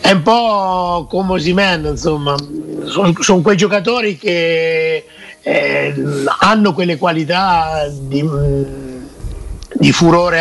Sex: male